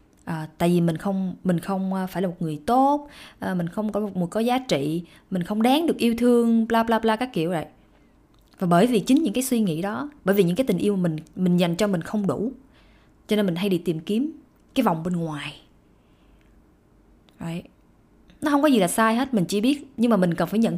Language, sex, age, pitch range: Vietnamese, female, 20-39, 170-230 Hz